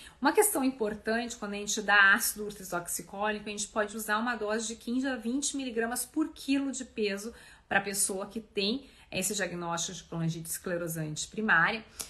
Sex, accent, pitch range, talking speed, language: female, Brazilian, 200-245 Hz, 175 wpm, Portuguese